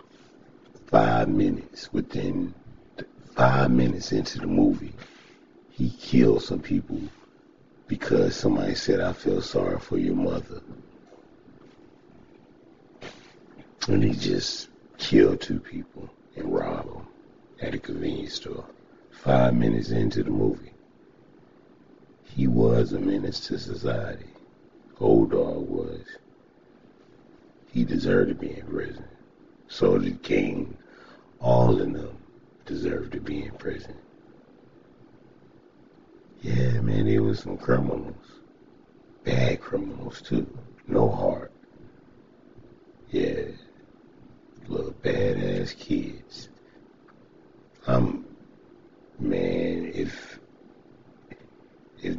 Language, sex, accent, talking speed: English, male, American, 95 wpm